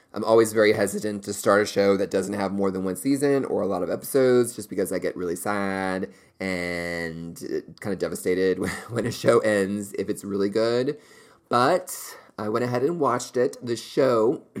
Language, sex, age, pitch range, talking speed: English, male, 30-49, 95-115 Hz, 195 wpm